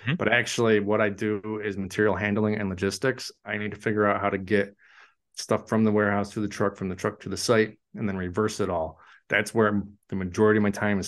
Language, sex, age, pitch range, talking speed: English, male, 30-49, 100-115 Hz, 240 wpm